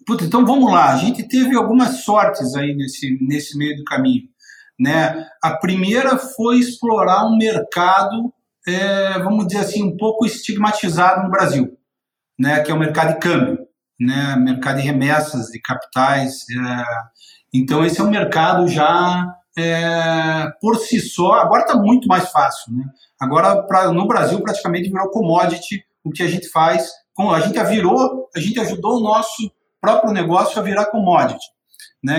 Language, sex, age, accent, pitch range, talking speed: Portuguese, male, 50-69, Brazilian, 160-220 Hz, 160 wpm